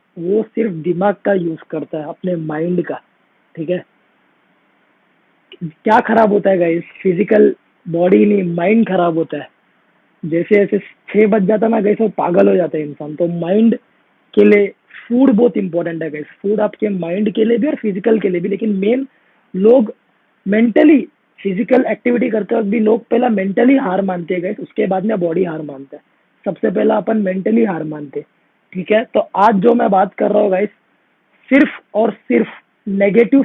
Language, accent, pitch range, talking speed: English, Indian, 190-230 Hz, 130 wpm